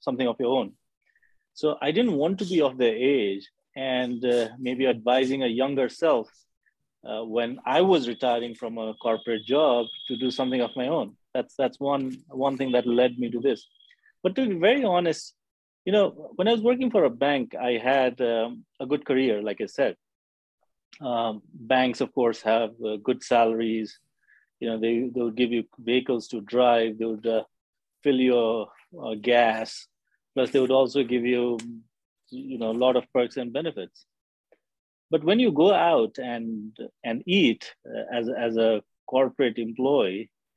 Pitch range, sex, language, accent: 115-140 Hz, male, English, Indian